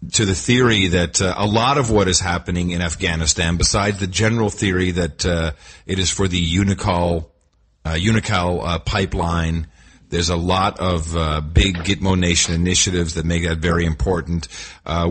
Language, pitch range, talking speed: English, 85-115 Hz, 170 wpm